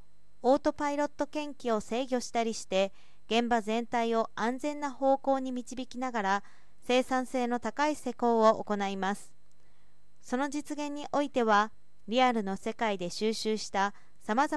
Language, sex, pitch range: Japanese, female, 210-270 Hz